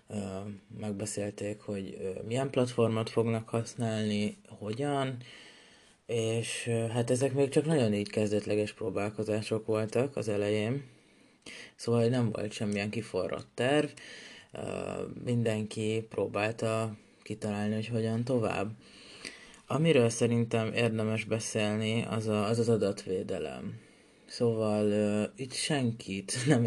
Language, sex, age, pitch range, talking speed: Hungarian, male, 20-39, 105-120 Hz, 100 wpm